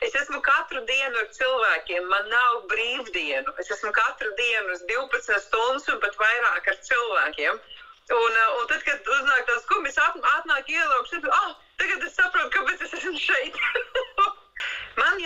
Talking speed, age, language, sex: 155 wpm, 30-49, English, female